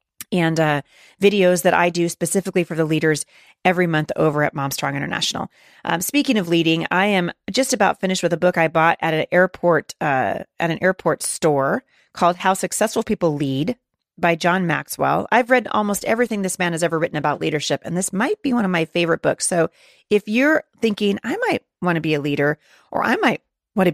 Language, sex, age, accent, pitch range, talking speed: English, female, 30-49, American, 165-215 Hz, 200 wpm